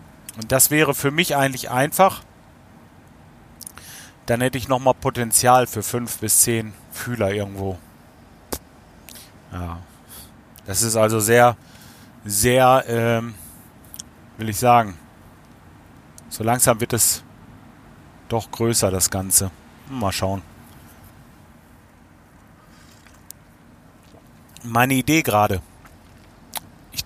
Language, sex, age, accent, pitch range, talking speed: German, male, 40-59, German, 95-130 Hz, 95 wpm